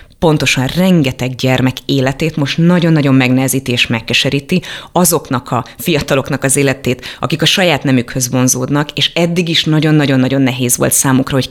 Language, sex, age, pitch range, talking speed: Hungarian, female, 30-49, 130-155 Hz, 140 wpm